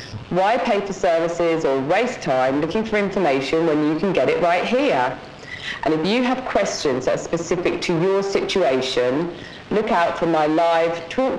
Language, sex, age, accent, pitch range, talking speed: English, female, 40-59, British, 150-200 Hz, 180 wpm